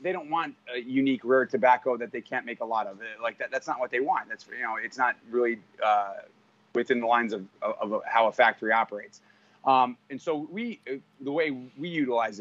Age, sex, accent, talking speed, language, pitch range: 30-49, male, American, 220 wpm, English, 110-135 Hz